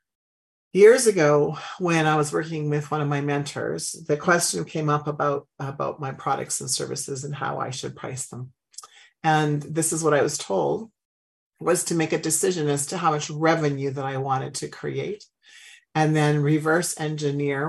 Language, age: English, 50-69